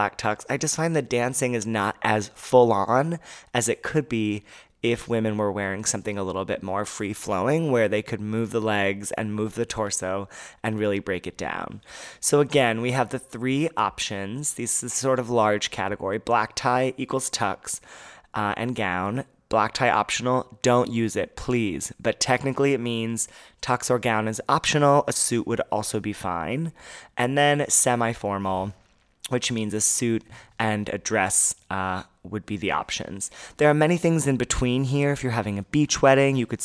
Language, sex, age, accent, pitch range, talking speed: English, male, 30-49, American, 105-130 Hz, 180 wpm